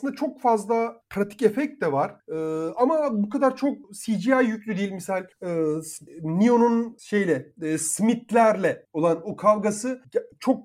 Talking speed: 135 wpm